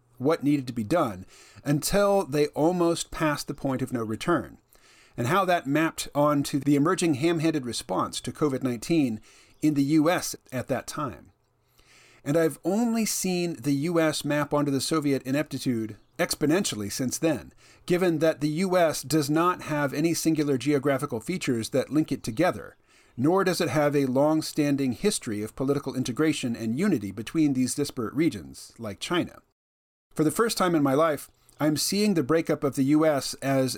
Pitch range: 130-160 Hz